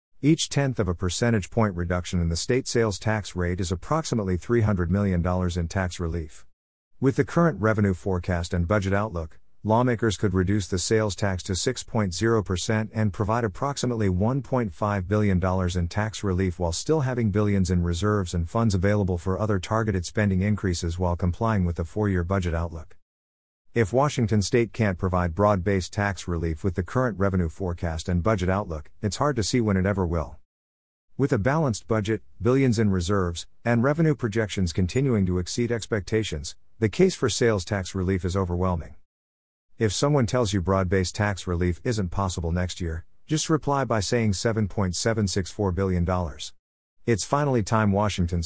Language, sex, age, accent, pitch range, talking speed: English, male, 50-69, American, 90-110 Hz, 165 wpm